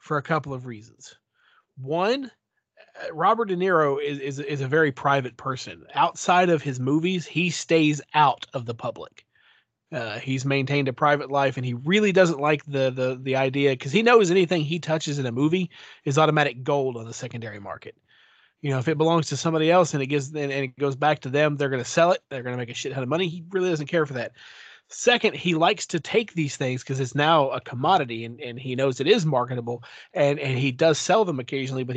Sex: male